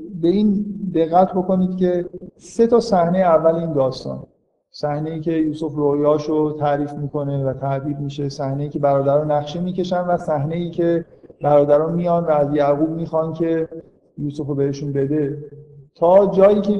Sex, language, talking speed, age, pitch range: male, Persian, 160 wpm, 50-69, 145-175 Hz